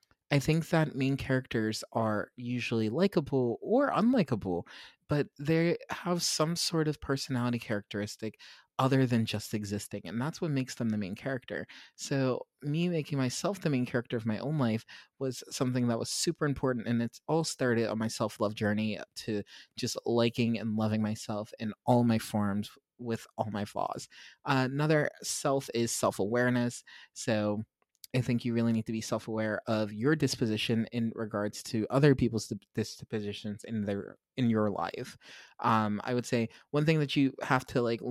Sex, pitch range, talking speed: male, 110-140 Hz, 170 wpm